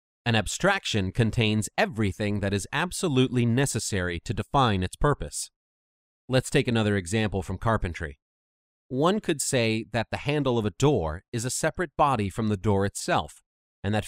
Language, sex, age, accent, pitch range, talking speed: English, male, 30-49, American, 95-145 Hz, 160 wpm